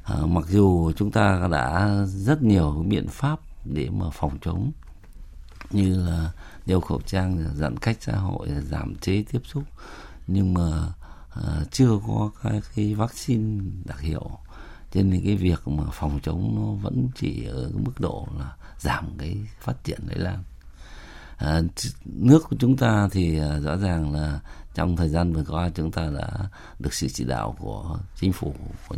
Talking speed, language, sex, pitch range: 170 wpm, Vietnamese, male, 75-95 Hz